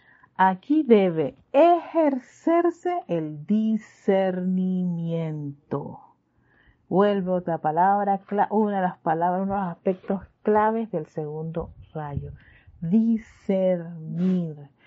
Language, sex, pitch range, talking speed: Spanish, female, 175-240 Hz, 90 wpm